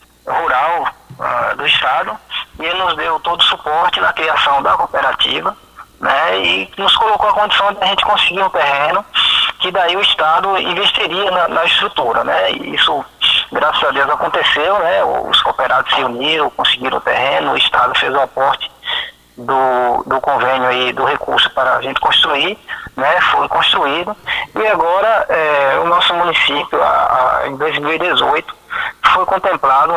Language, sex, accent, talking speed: Portuguese, male, Brazilian, 150 wpm